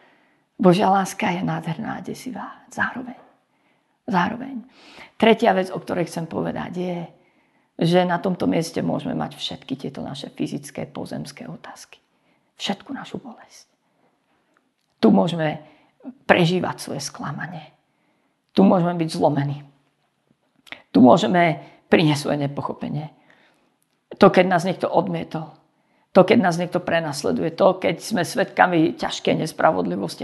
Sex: female